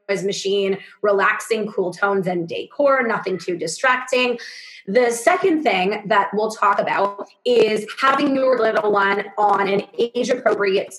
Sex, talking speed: female, 130 wpm